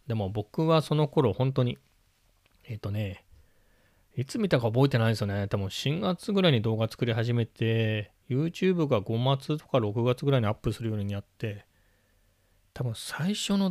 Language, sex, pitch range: Japanese, male, 105-155 Hz